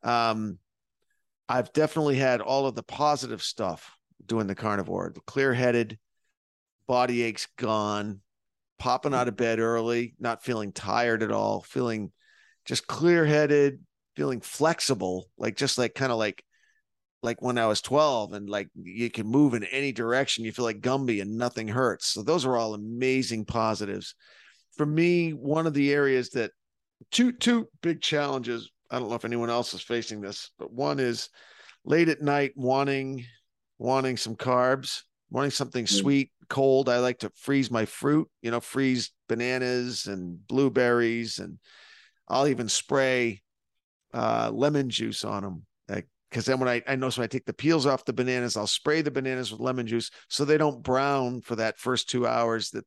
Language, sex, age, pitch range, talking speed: English, male, 40-59, 115-135 Hz, 170 wpm